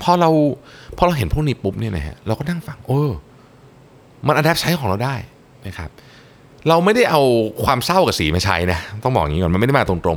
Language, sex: Thai, male